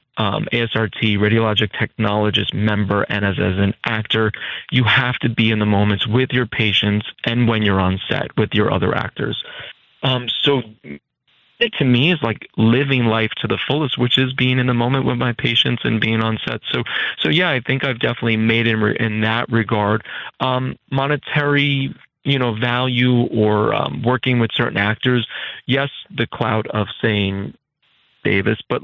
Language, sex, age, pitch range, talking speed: English, male, 30-49, 110-125 Hz, 180 wpm